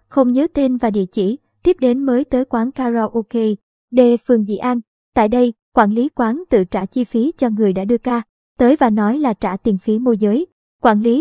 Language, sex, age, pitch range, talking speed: Vietnamese, male, 20-39, 220-265 Hz, 220 wpm